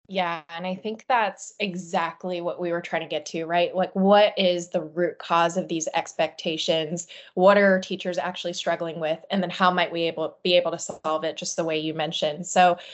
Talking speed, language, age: 215 wpm, English, 20-39